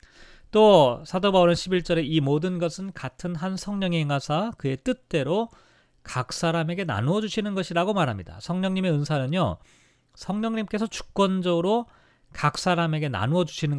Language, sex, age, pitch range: Korean, male, 40-59, 135-185 Hz